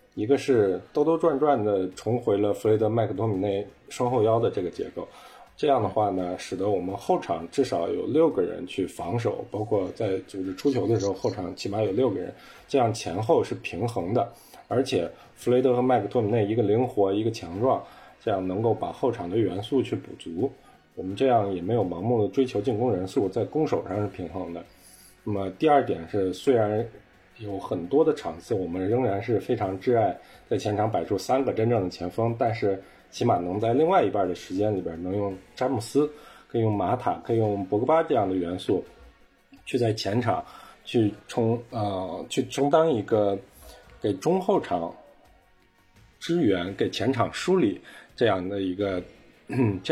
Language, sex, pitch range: Chinese, male, 95-125 Hz